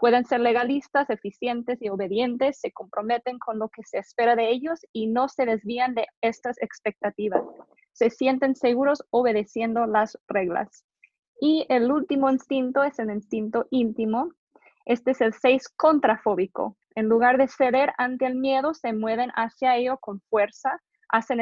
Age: 20-39